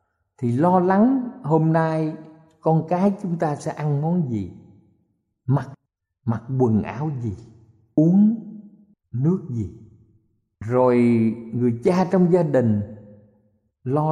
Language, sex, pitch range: Thai, male, 115-185 Hz